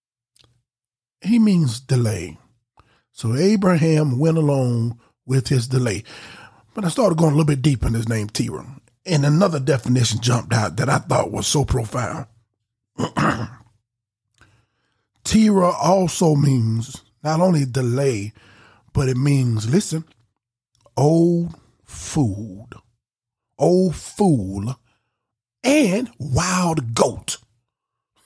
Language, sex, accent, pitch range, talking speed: English, male, American, 115-180 Hz, 105 wpm